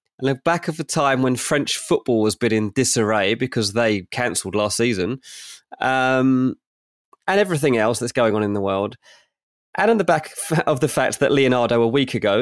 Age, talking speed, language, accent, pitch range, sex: 20-39, 190 wpm, English, British, 110-140 Hz, male